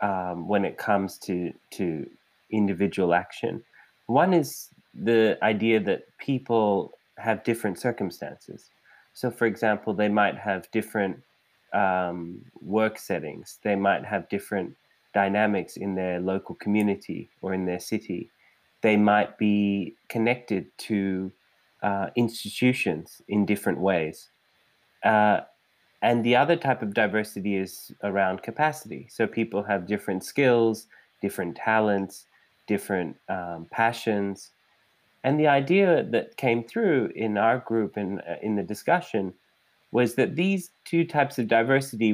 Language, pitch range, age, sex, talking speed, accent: English, 95-115 Hz, 20-39, male, 125 wpm, Australian